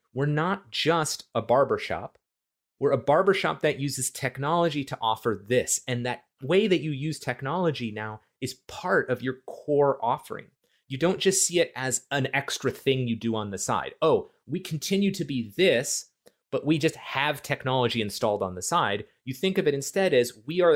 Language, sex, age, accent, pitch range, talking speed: English, male, 30-49, American, 120-155 Hz, 190 wpm